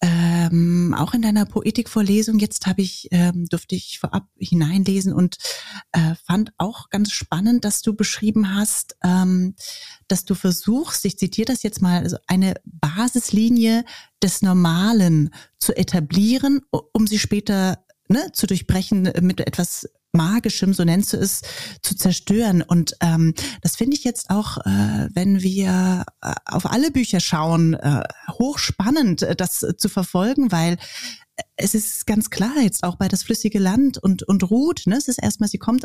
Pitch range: 180-220 Hz